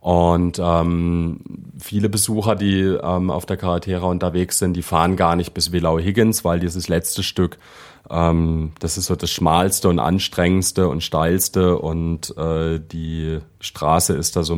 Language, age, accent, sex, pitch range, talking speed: German, 30-49, German, male, 85-95 Hz, 160 wpm